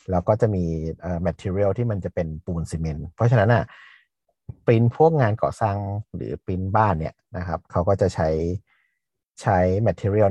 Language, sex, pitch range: Thai, male, 85-115 Hz